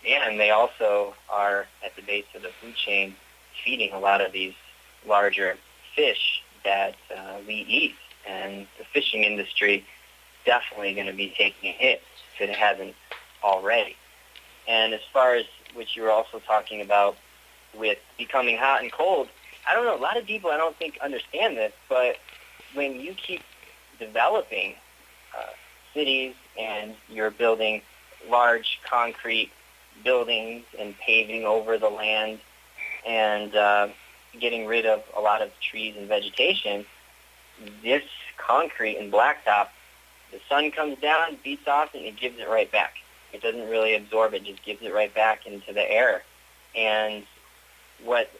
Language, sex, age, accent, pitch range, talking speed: English, male, 30-49, American, 100-125 Hz, 155 wpm